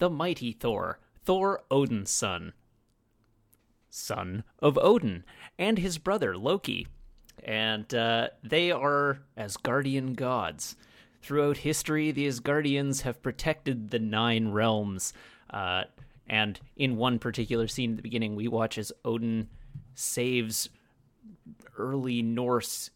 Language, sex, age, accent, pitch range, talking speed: English, male, 30-49, American, 105-135 Hz, 115 wpm